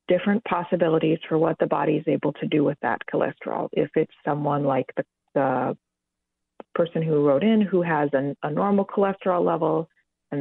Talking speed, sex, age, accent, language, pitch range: 175 wpm, female, 30-49, American, English, 140-180 Hz